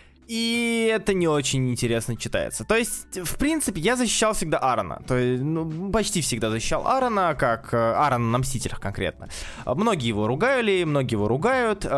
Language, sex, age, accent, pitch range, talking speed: Russian, male, 20-39, native, 115-170 Hz, 160 wpm